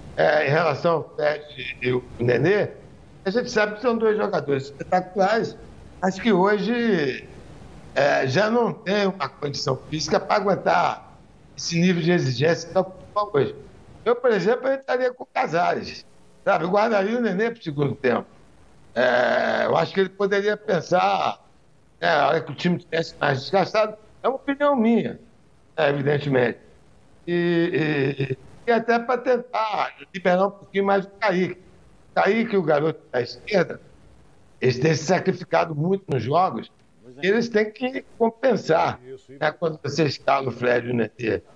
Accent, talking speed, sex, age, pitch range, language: Brazilian, 160 wpm, male, 60-79, 140-205 Hz, Portuguese